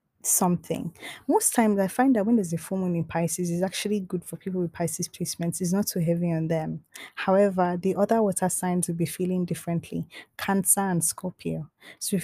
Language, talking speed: English, 200 wpm